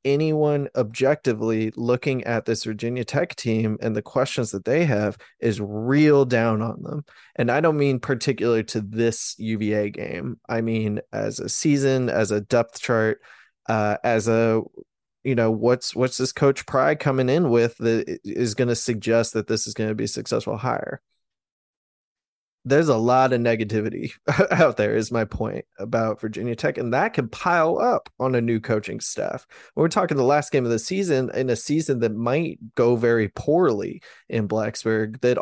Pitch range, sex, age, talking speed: 110-130 Hz, male, 20-39, 180 wpm